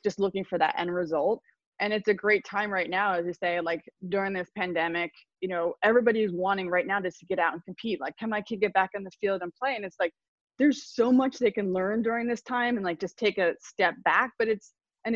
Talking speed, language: 255 wpm, English